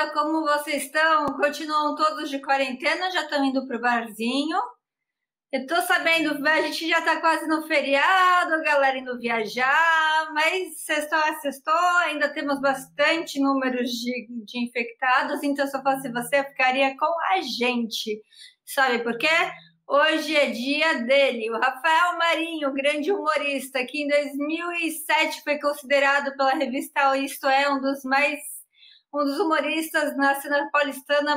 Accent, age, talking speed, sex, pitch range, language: Brazilian, 20-39, 145 wpm, female, 270-310 Hz, Portuguese